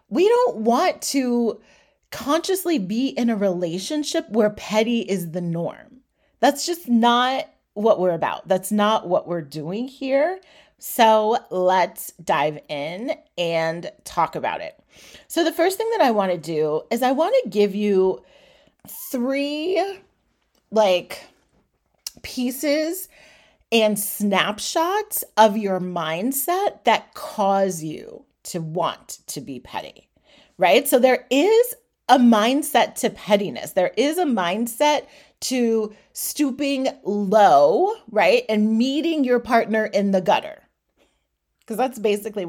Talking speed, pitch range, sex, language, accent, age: 130 wpm, 195-285 Hz, female, English, American, 30-49